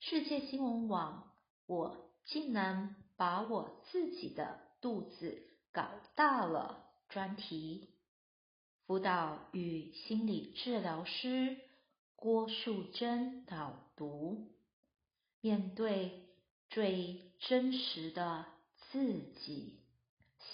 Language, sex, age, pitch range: Chinese, female, 50-69, 165-225 Hz